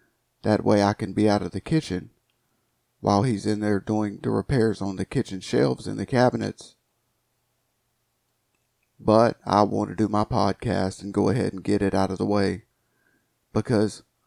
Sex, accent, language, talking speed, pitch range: male, American, English, 175 wpm, 100-125 Hz